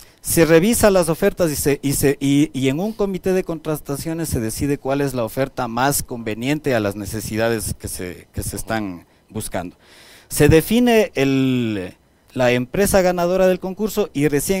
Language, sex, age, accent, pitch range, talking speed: Spanish, male, 40-59, Mexican, 110-165 Hz, 175 wpm